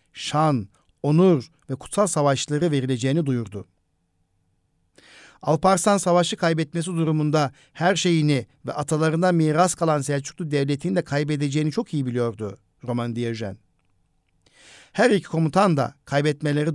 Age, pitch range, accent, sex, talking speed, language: 60-79, 125-160 Hz, native, male, 110 wpm, Turkish